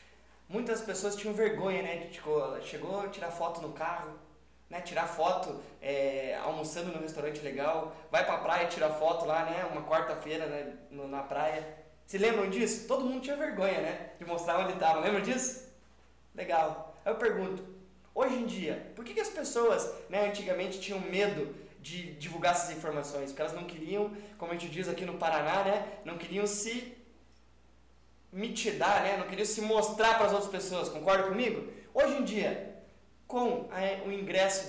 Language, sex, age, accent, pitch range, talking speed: Portuguese, male, 20-39, Brazilian, 170-220 Hz, 180 wpm